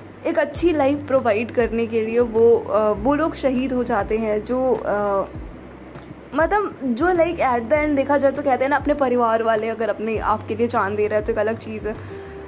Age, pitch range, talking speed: 20-39, 215-265 Hz, 220 wpm